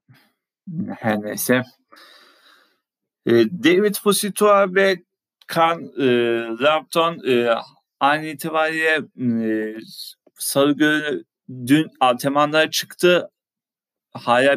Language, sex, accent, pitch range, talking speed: Turkish, male, native, 135-175 Hz, 75 wpm